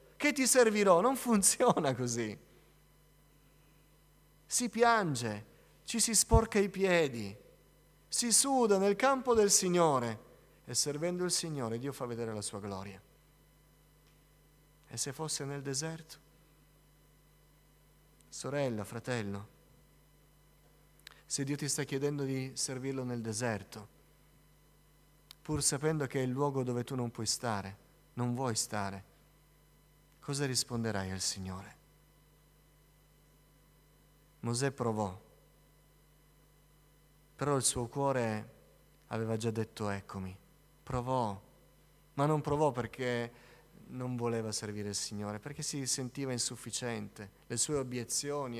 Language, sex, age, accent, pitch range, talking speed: Italian, male, 40-59, native, 115-155 Hz, 110 wpm